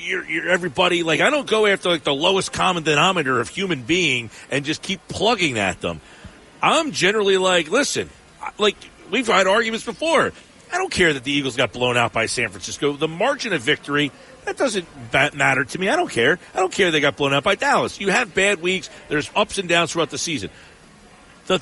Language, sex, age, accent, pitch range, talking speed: English, male, 40-59, American, 145-205 Hz, 210 wpm